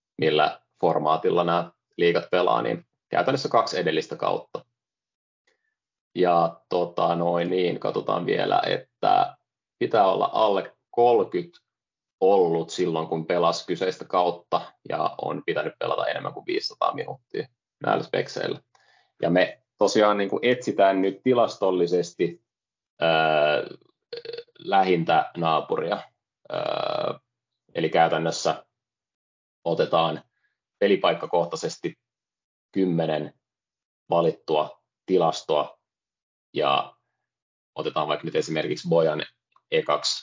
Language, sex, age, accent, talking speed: Finnish, male, 30-49, native, 95 wpm